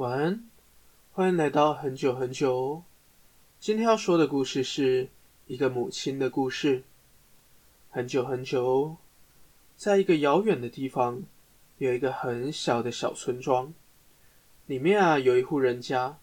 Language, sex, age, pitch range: Chinese, male, 20-39, 125-155 Hz